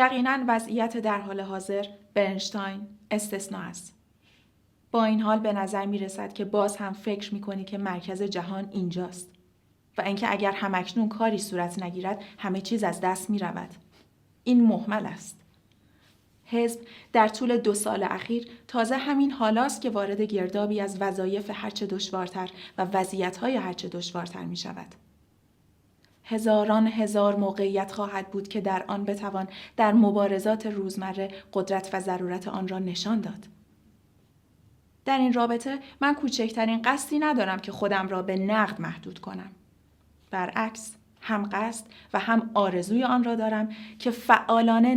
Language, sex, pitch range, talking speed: Persian, female, 195-225 Hz, 145 wpm